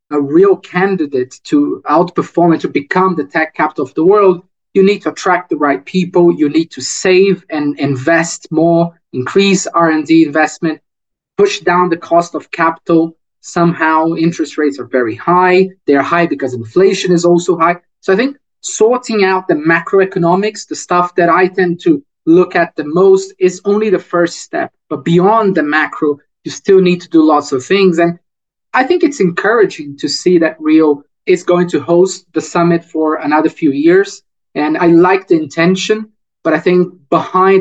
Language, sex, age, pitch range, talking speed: English, male, 20-39, 160-190 Hz, 180 wpm